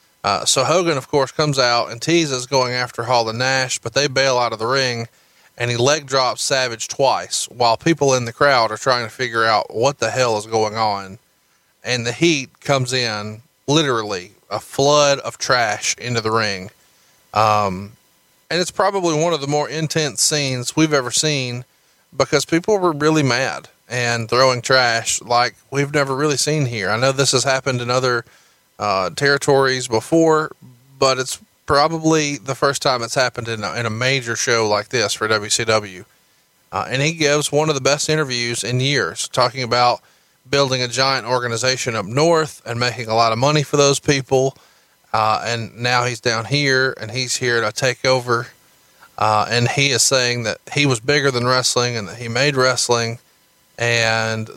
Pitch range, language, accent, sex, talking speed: 115-140 Hz, English, American, male, 185 wpm